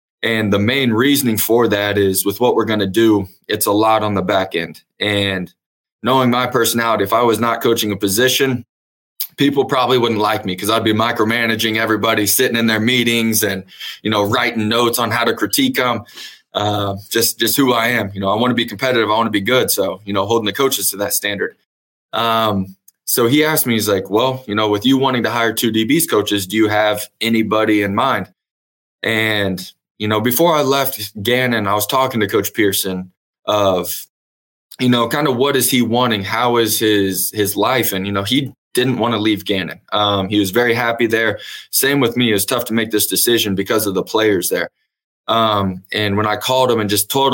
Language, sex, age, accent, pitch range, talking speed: English, male, 20-39, American, 100-120 Hz, 220 wpm